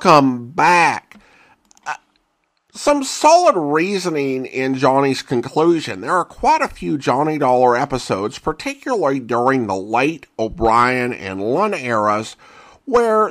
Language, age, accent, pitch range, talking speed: English, 50-69, American, 125-195 Hz, 115 wpm